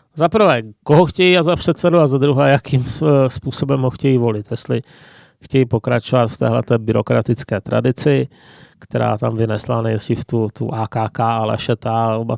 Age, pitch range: 30-49, 115-135 Hz